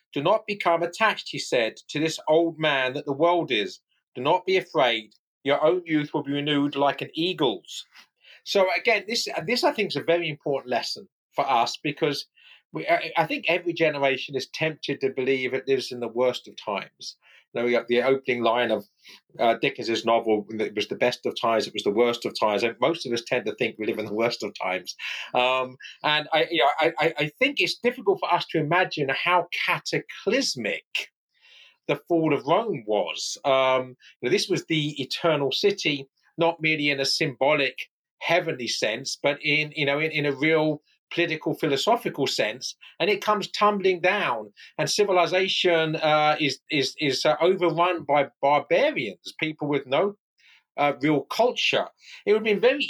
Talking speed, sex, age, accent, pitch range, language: 185 wpm, male, 40-59, British, 135-175 Hz, English